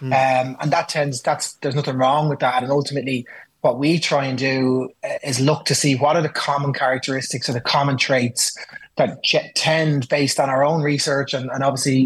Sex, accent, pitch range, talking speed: male, Irish, 130-145 Hz, 200 wpm